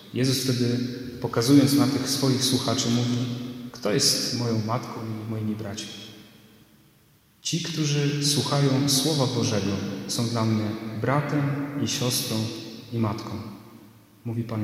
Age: 40-59